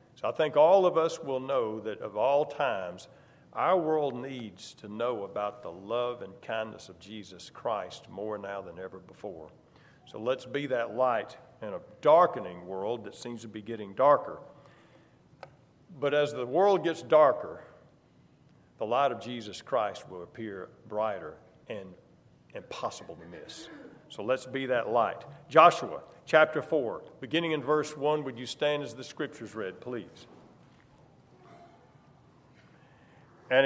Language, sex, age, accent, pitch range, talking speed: English, male, 50-69, American, 120-155 Hz, 150 wpm